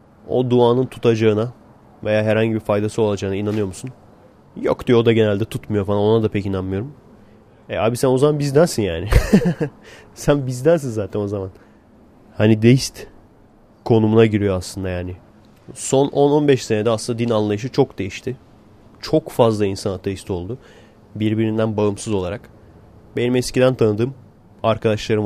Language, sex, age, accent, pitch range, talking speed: Turkish, male, 30-49, native, 105-125 Hz, 140 wpm